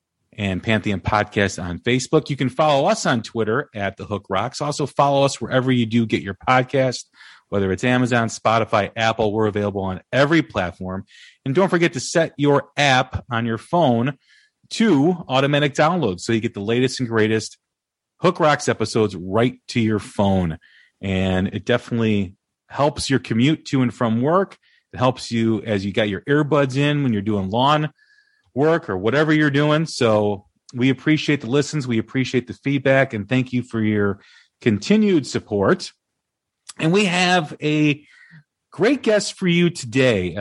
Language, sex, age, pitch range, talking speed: English, male, 30-49, 105-145 Hz, 170 wpm